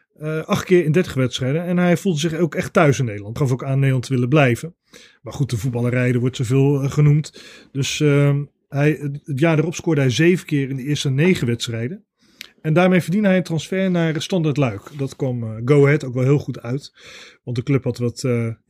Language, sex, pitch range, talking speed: Dutch, male, 125-165 Hz, 225 wpm